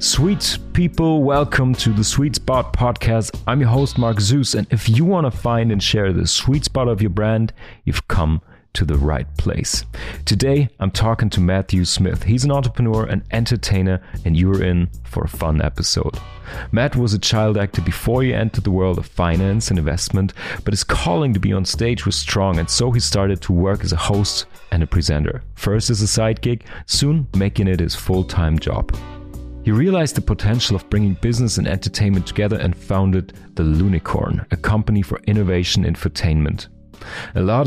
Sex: male